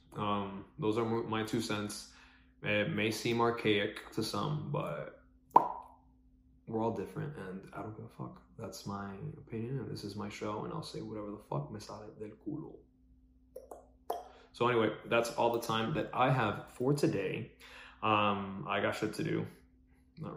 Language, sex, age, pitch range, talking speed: English, male, 20-39, 100-125 Hz, 170 wpm